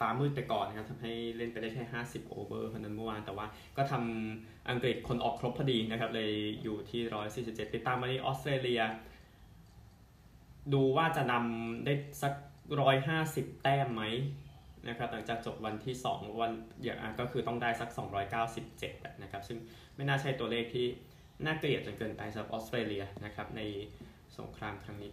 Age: 20-39